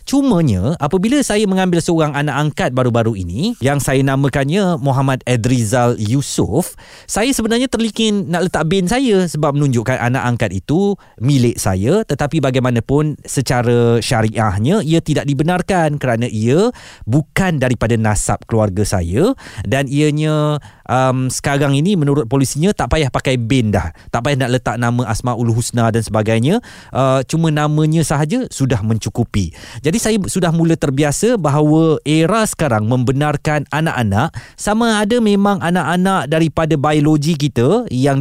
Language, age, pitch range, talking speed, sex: Malay, 20-39, 120-165 Hz, 140 wpm, male